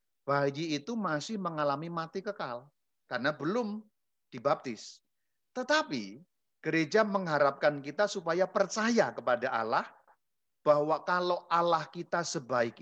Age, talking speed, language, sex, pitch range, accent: 50-69, 105 wpm, Indonesian, male, 140-205 Hz, native